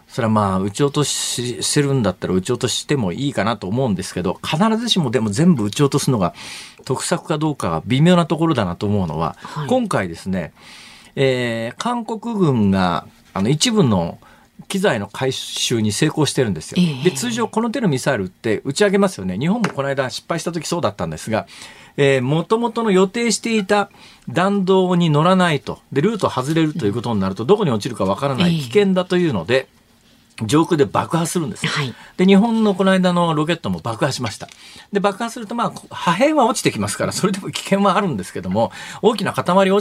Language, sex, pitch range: Japanese, male, 135-200 Hz